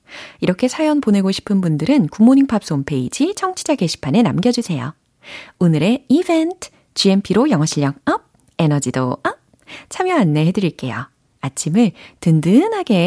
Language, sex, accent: Korean, female, native